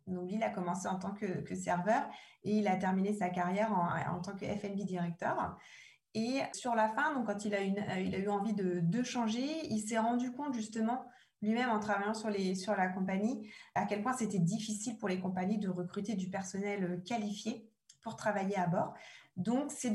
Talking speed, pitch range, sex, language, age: 210 wpm, 195-225 Hz, female, French, 20-39